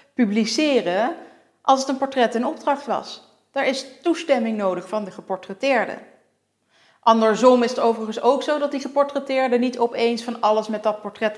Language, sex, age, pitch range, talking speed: Dutch, female, 40-59, 185-255 Hz, 165 wpm